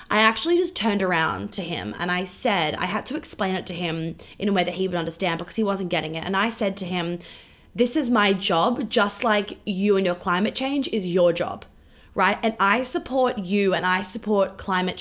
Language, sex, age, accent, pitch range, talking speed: English, female, 20-39, Australian, 185-225 Hz, 230 wpm